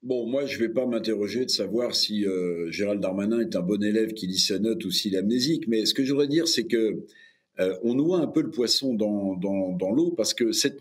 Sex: male